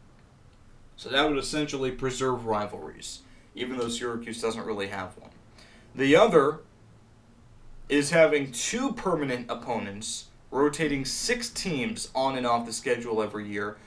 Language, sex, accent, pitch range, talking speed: English, male, American, 115-145 Hz, 130 wpm